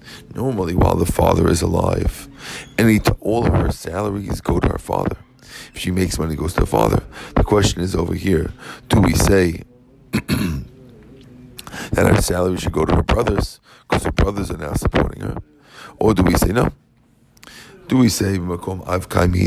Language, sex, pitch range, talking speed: English, male, 90-110 Hz, 170 wpm